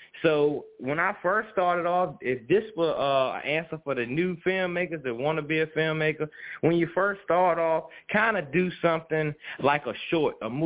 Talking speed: 190 wpm